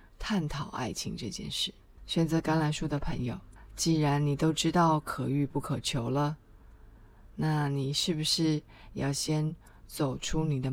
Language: Chinese